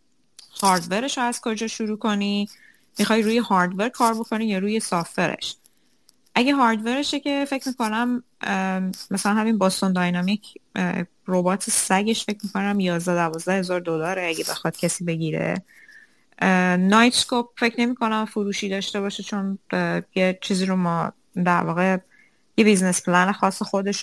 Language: Persian